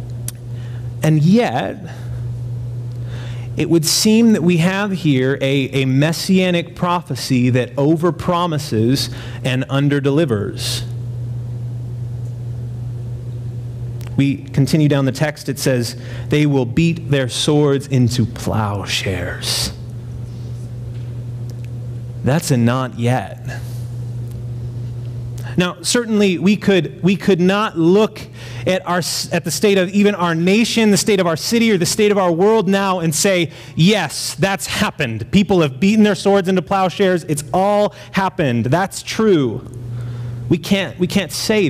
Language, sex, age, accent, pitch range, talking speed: English, male, 30-49, American, 120-180 Hz, 125 wpm